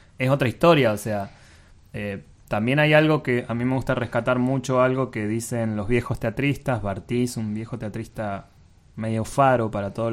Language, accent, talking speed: English, Argentinian, 180 wpm